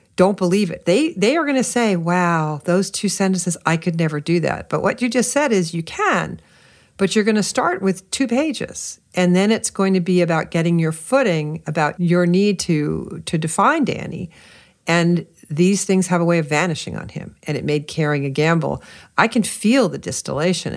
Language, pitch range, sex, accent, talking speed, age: English, 150-195 Hz, female, American, 210 wpm, 50-69